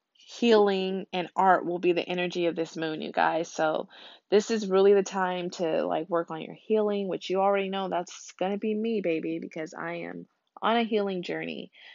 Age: 20-39